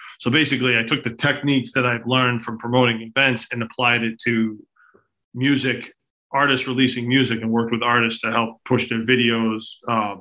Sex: male